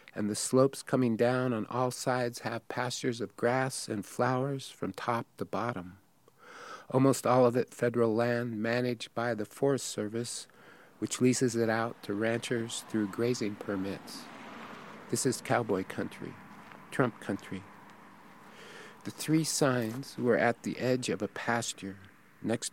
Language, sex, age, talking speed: English, male, 50-69, 145 wpm